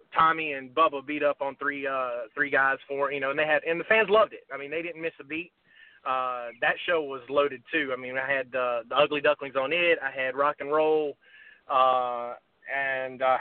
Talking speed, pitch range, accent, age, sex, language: 235 wpm, 140-160 Hz, American, 30-49, male, English